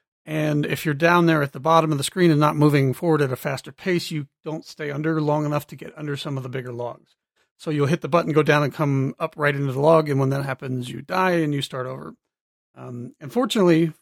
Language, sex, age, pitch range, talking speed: English, male, 40-59, 140-165 Hz, 255 wpm